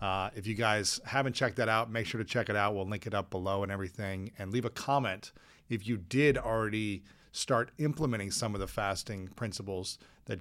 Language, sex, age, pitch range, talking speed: English, male, 40-59, 100-125 Hz, 215 wpm